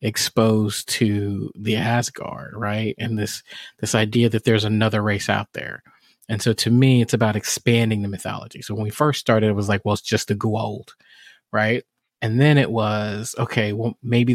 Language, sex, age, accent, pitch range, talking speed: English, male, 30-49, American, 110-125 Hz, 190 wpm